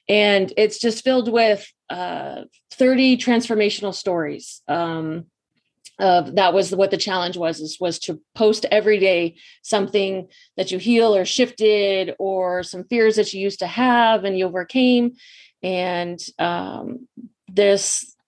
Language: English